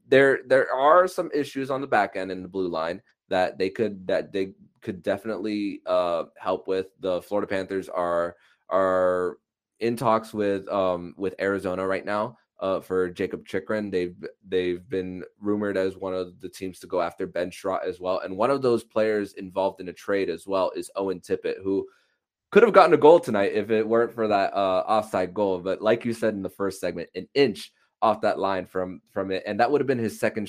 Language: English